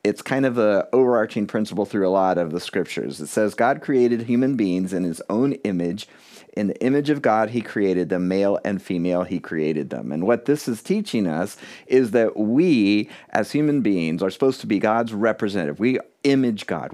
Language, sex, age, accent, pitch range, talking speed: English, male, 40-59, American, 95-130 Hz, 200 wpm